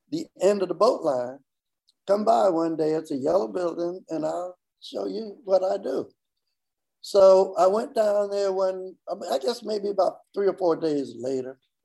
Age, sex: 60-79, male